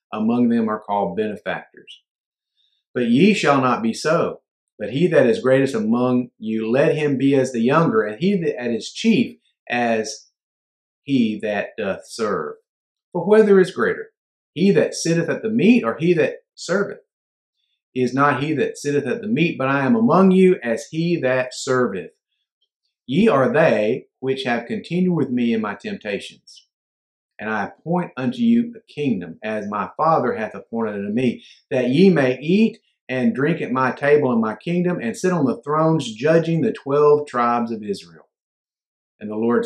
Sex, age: male, 40-59